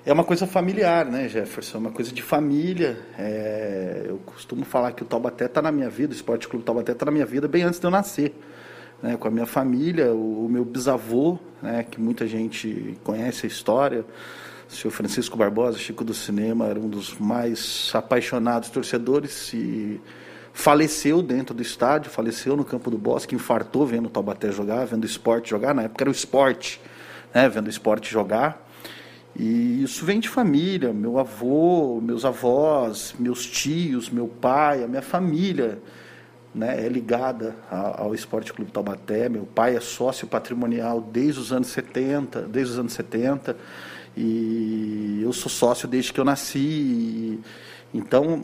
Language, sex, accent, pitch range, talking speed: Portuguese, male, Brazilian, 115-150 Hz, 170 wpm